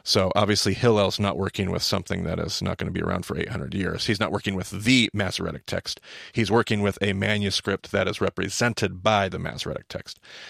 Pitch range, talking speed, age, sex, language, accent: 100-125 Hz, 205 wpm, 30-49, male, English, American